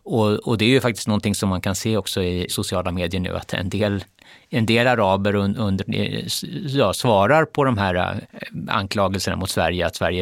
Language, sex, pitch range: Swedish, male, 100-130 Hz